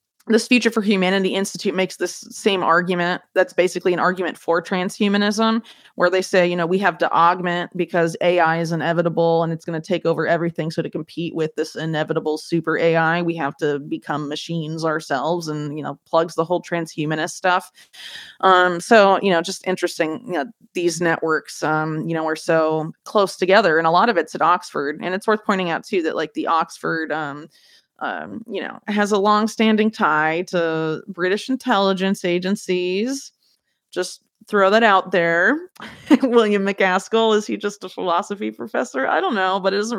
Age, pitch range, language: 30-49, 165-200 Hz, English